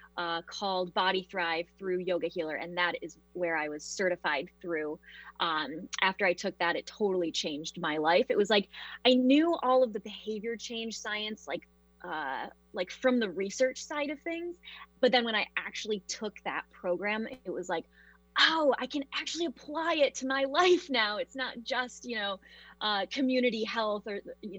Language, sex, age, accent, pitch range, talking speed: English, female, 20-39, American, 175-240 Hz, 185 wpm